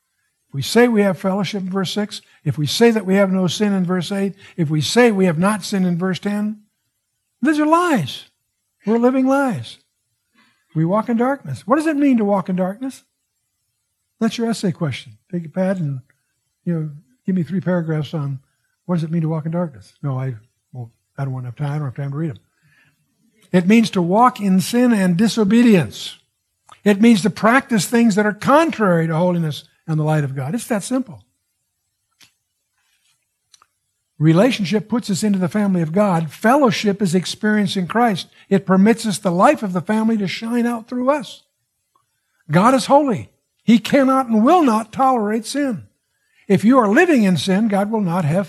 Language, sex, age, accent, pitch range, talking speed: English, male, 60-79, American, 155-230 Hz, 195 wpm